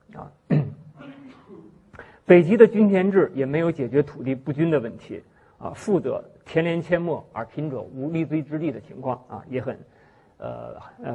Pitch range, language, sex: 130-170 Hz, Chinese, male